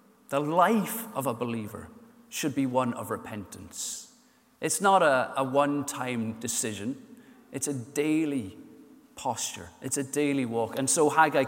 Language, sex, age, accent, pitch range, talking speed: English, male, 30-49, British, 130-185 Hz, 140 wpm